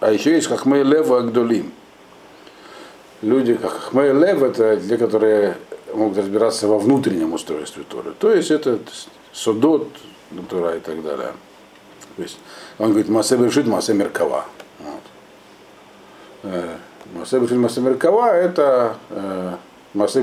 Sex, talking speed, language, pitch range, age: male, 130 wpm, Russian, 115-155 Hz, 50-69